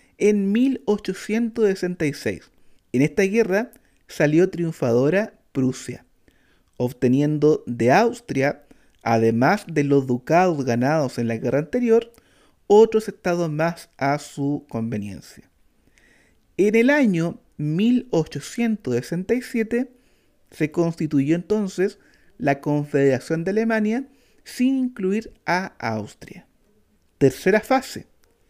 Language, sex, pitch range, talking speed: Spanish, male, 150-230 Hz, 90 wpm